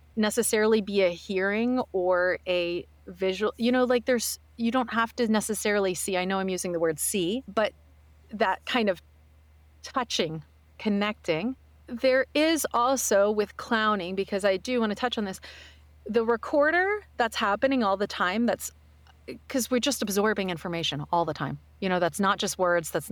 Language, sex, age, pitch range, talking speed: English, female, 30-49, 180-230 Hz, 170 wpm